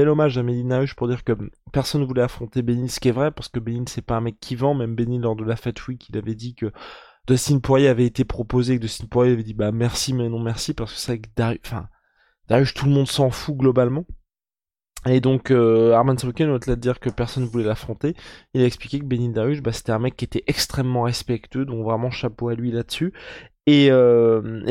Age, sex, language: 20-39, male, French